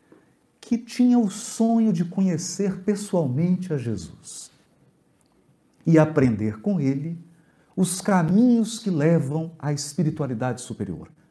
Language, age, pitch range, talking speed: Portuguese, 50-69, 135-215 Hz, 105 wpm